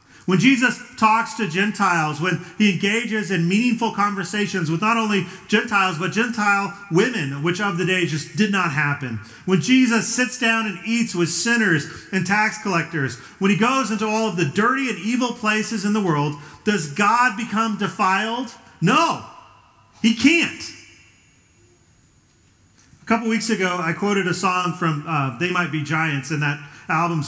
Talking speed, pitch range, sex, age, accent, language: 165 wpm, 160-225 Hz, male, 40-59, American, English